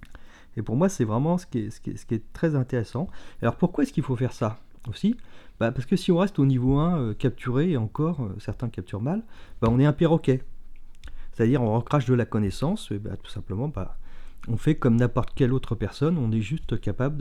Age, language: 40-59, French